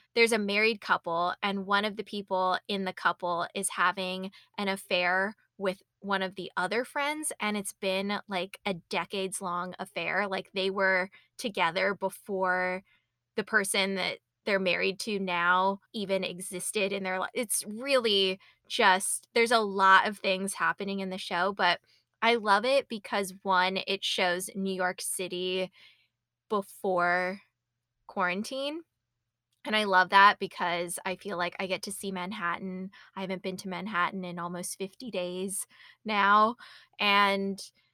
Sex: female